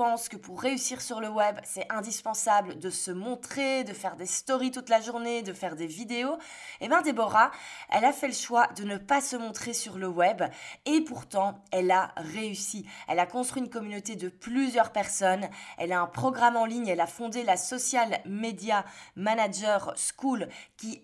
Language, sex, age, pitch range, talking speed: French, female, 20-39, 195-250 Hz, 190 wpm